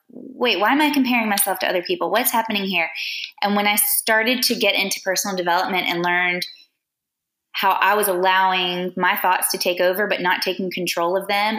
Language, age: English, 20-39